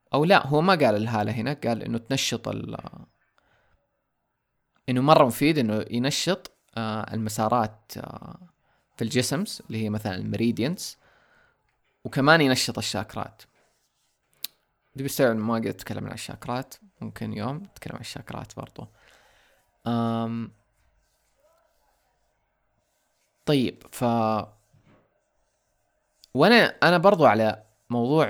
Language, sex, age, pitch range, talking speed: Arabic, male, 20-39, 110-130 Hz, 95 wpm